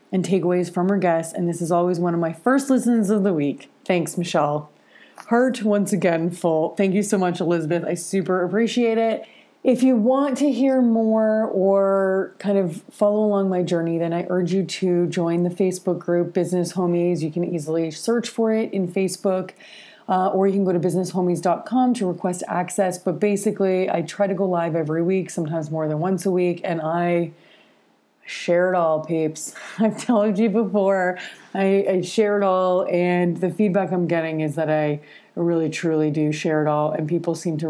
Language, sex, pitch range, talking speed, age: English, female, 165-205 Hz, 195 wpm, 30-49